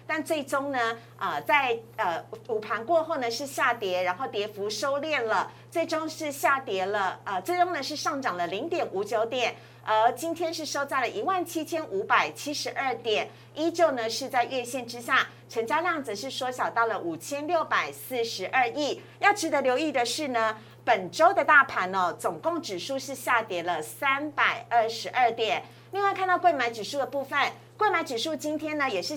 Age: 50-69